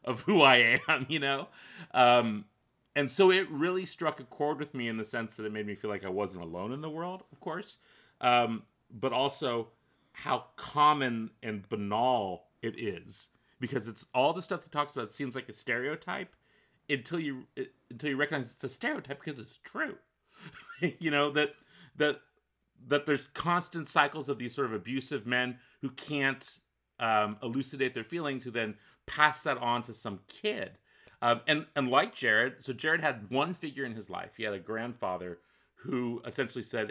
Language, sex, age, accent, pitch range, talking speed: English, male, 30-49, American, 110-145 Hz, 185 wpm